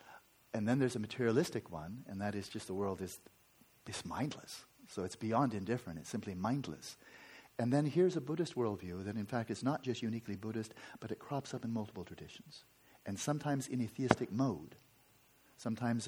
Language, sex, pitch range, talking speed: English, male, 105-130 Hz, 185 wpm